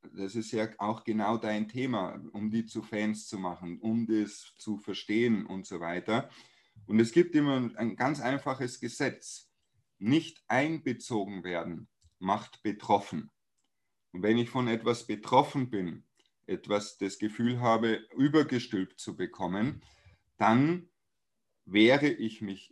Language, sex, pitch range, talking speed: German, male, 105-120 Hz, 135 wpm